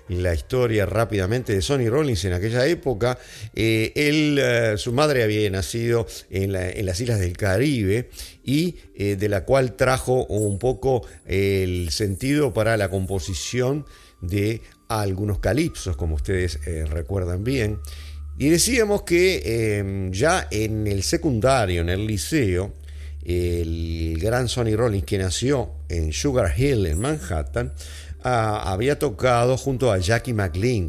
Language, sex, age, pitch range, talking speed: Spanish, male, 50-69, 90-125 Hz, 140 wpm